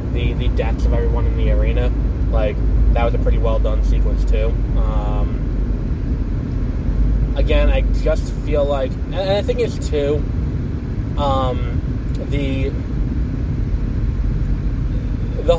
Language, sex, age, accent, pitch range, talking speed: English, male, 20-39, American, 70-95 Hz, 115 wpm